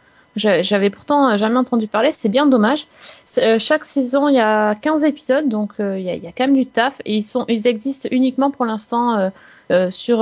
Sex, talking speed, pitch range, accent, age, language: female, 235 wpm, 190-245 Hz, French, 20-39, French